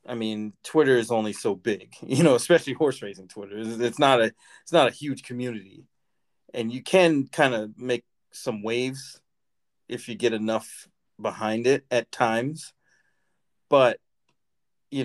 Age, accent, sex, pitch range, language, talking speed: 40-59, American, male, 105-125 Hz, English, 160 wpm